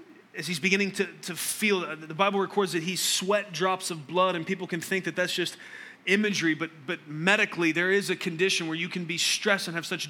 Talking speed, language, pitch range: 225 wpm, English, 150-185 Hz